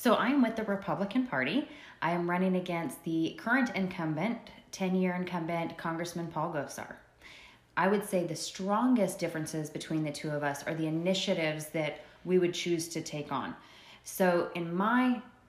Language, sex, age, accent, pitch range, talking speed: English, female, 20-39, American, 155-185 Hz, 165 wpm